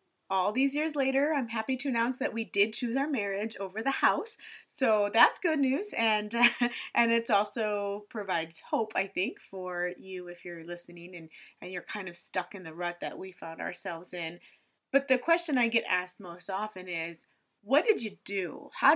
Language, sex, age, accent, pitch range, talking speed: English, female, 20-39, American, 185-250 Hz, 200 wpm